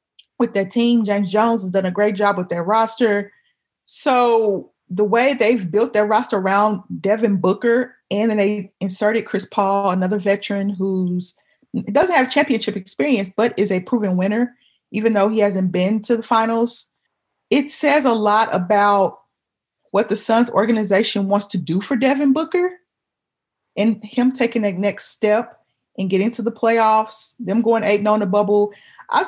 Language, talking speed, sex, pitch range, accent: English, 170 wpm, female, 200-245 Hz, American